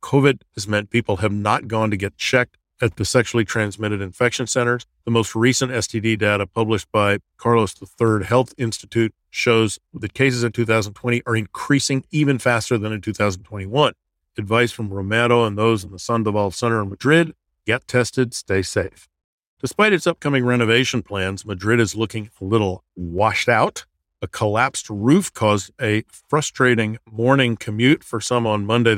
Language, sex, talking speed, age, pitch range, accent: English, male, 160 wpm, 50-69, 100-120 Hz, American